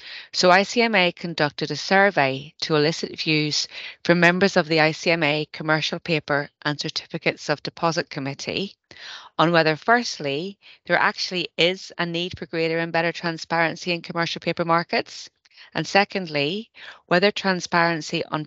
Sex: female